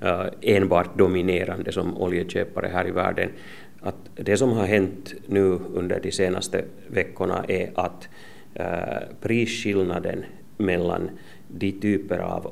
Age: 30-49